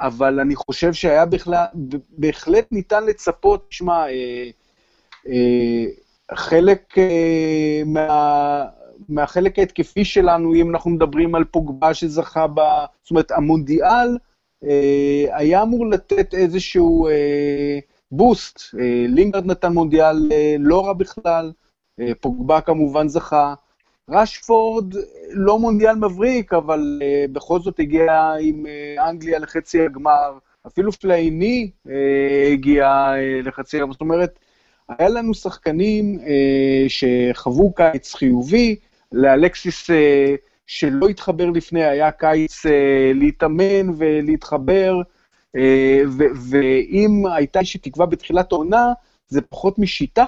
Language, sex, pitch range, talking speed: Hebrew, male, 145-190 Hz, 115 wpm